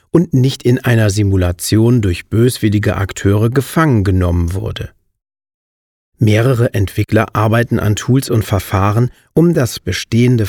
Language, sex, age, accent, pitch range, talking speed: German, male, 40-59, German, 100-125 Hz, 120 wpm